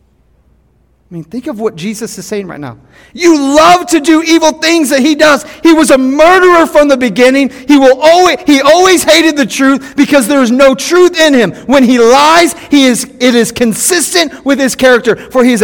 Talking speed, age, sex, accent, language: 210 wpm, 40-59, male, American, English